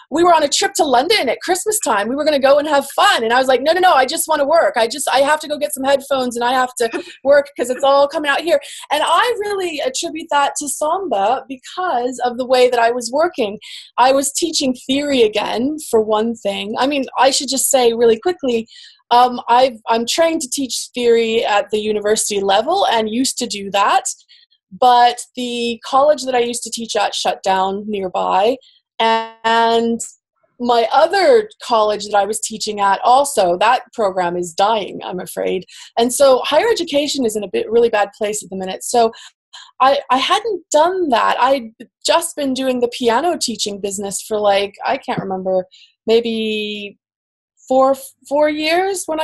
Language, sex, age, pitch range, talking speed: Polish, female, 20-39, 220-290 Hz, 195 wpm